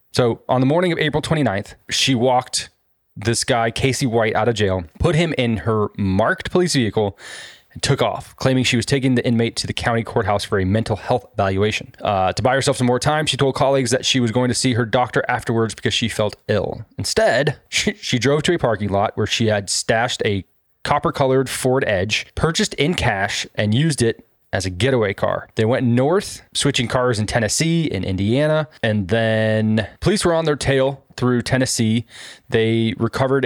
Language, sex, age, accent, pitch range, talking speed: English, male, 20-39, American, 105-130 Hz, 195 wpm